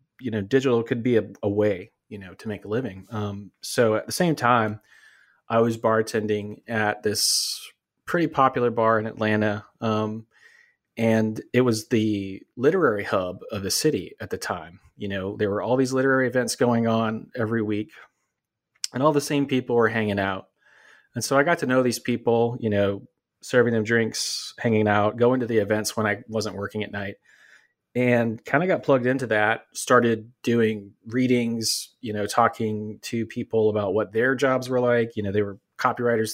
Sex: male